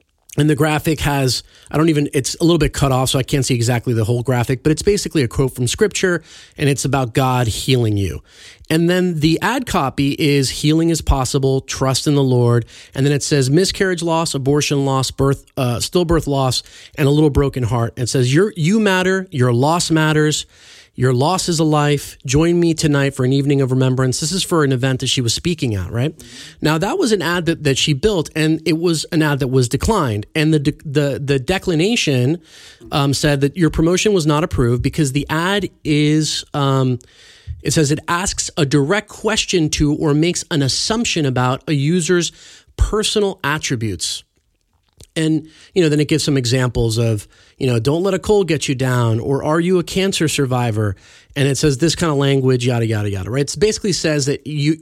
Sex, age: male, 30-49